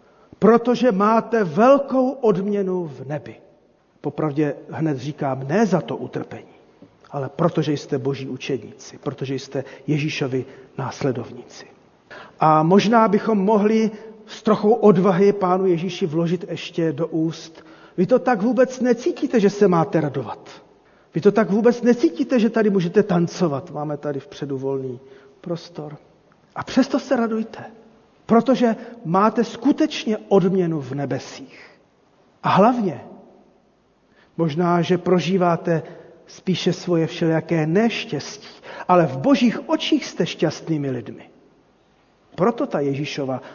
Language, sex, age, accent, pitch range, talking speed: Czech, male, 40-59, native, 155-220 Hz, 120 wpm